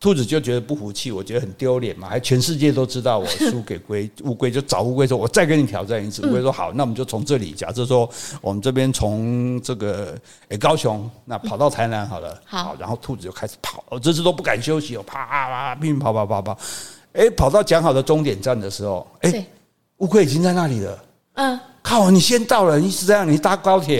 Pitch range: 115-170 Hz